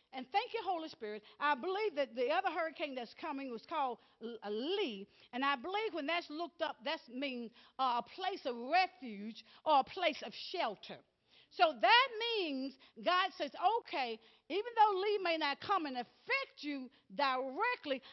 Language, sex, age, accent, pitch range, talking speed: English, female, 50-69, American, 265-420 Hz, 175 wpm